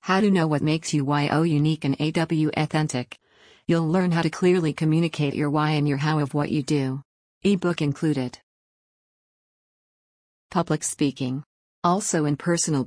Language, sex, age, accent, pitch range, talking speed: English, female, 50-69, American, 145-170 Hz, 155 wpm